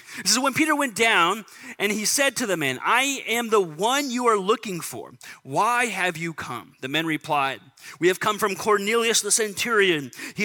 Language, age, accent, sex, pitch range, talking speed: English, 30-49, American, male, 160-235 Hz, 200 wpm